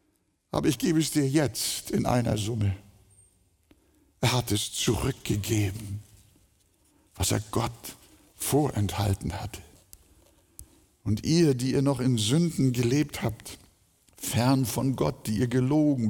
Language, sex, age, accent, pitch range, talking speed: German, male, 60-79, German, 110-155 Hz, 125 wpm